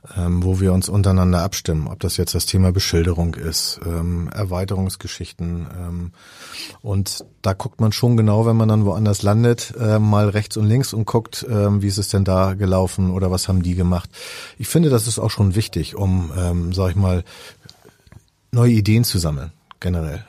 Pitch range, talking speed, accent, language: 95-110 Hz, 170 wpm, German, German